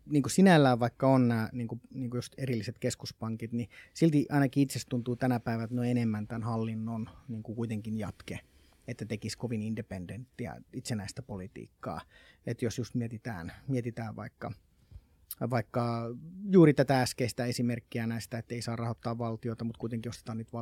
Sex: male